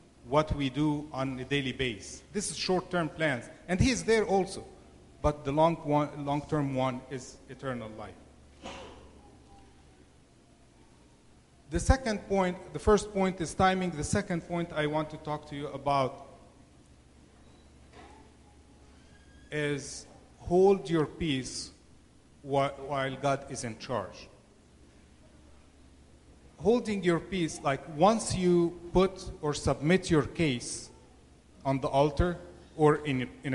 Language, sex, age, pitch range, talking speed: English, male, 40-59, 115-170 Hz, 125 wpm